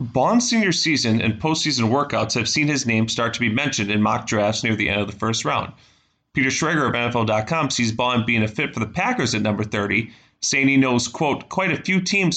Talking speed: 230 wpm